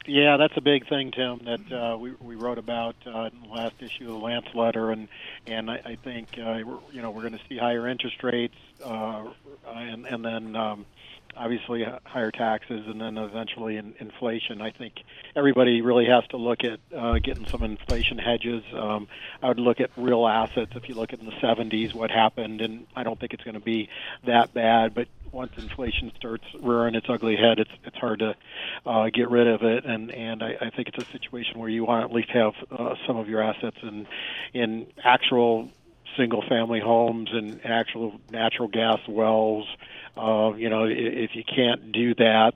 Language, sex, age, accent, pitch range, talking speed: English, male, 40-59, American, 110-120 Hz, 200 wpm